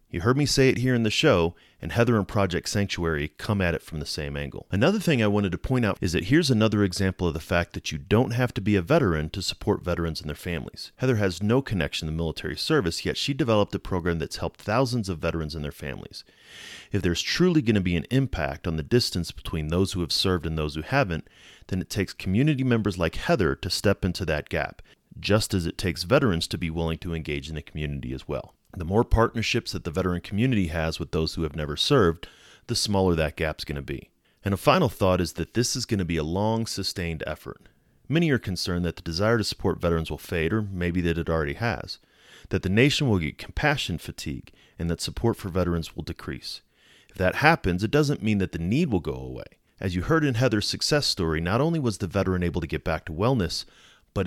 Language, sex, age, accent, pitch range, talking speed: English, male, 30-49, American, 80-115 Hz, 240 wpm